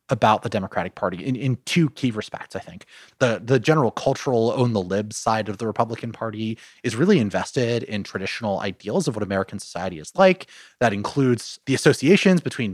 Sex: male